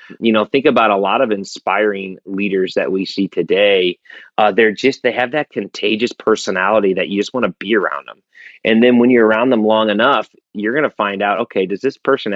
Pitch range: 100-125 Hz